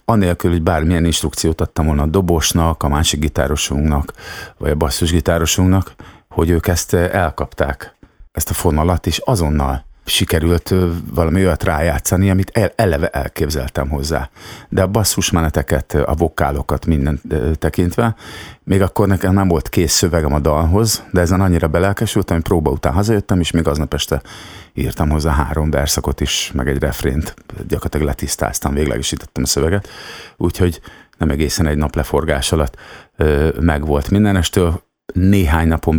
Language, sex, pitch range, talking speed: Hungarian, male, 75-90 Hz, 135 wpm